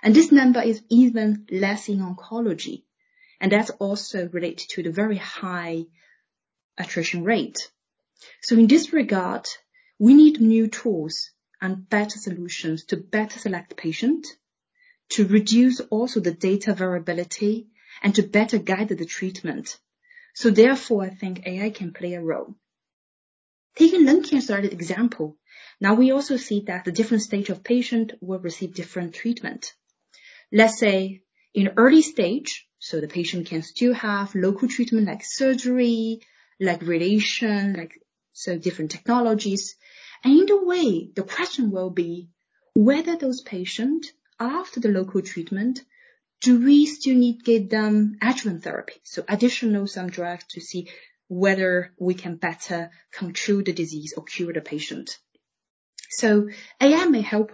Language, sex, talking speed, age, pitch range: English, female, 145 wpm, 30-49, 180-245 Hz